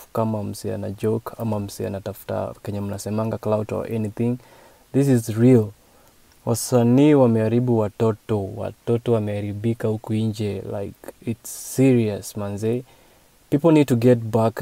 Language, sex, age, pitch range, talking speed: English, male, 20-39, 110-120 Hz, 120 wpm